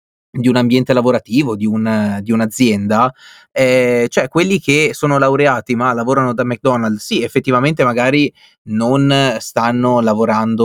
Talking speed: 135 wpm